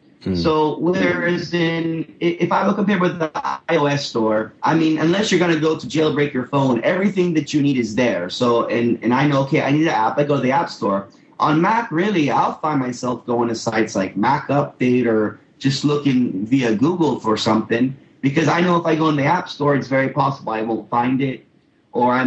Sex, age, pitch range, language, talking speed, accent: male, 30-49, 120-155 Hz, English, 220 wpm, American